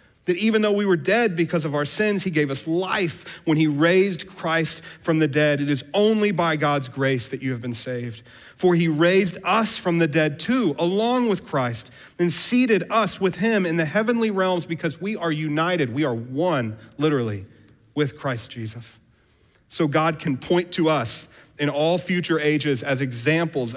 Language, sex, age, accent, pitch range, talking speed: English, male, 40-59, American, 125-170 Hz, 190 wpm